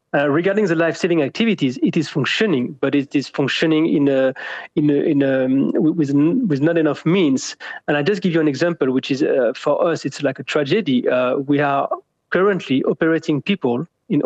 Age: 30-49